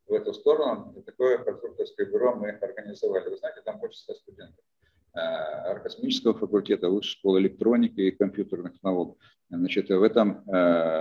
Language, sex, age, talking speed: Russian, male, 50-69, 135 wpm